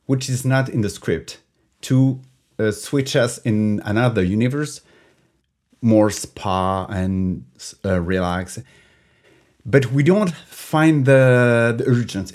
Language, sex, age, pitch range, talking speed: English, male, 50-69, 95-125 Hz, 120 wpm